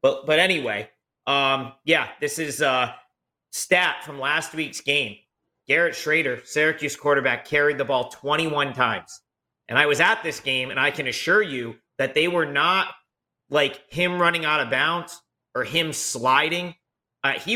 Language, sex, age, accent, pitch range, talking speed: English, male, 40-59, American, 130-155 Hz, 165 wpm